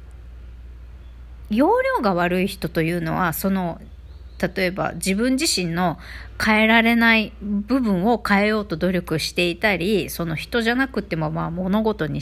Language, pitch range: Japanese, 165-250 Hz